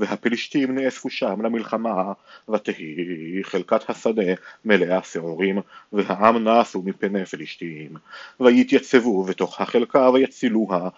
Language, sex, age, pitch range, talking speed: Hebrew, male, 40-59, 95-125 Hz, 95 wpm